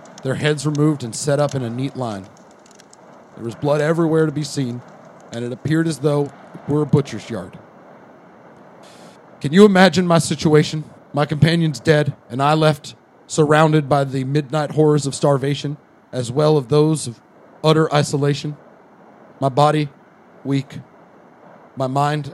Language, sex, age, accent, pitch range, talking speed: English, male, 40-59, American, 135-155 Hz, 155 wpm